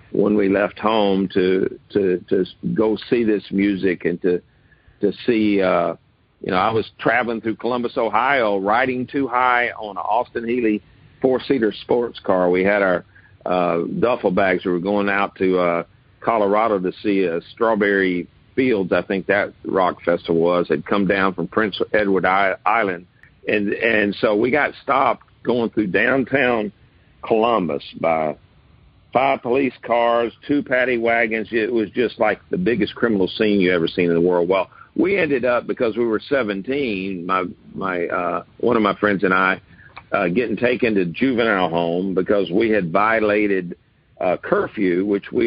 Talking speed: 170 wpm